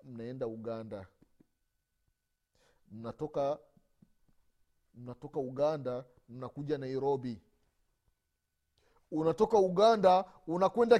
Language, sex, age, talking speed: Swahili, male, 40-59, 55 wpm